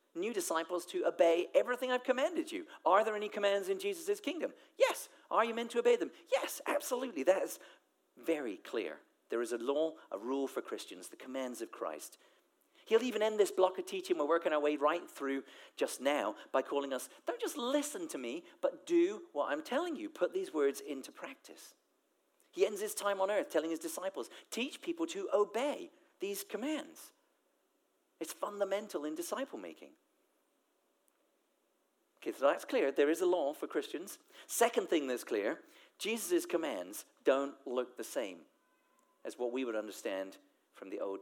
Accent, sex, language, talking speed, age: British, male, English, 175 wpm, 40-59